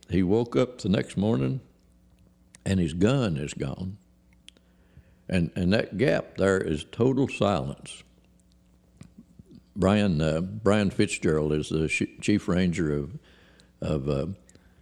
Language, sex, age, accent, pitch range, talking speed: English, male, 60-79, American, 65-95 Hz, 125 wpm